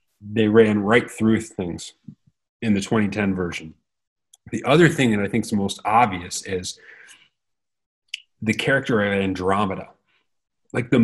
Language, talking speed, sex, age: English, 135 wpm, male, 30-49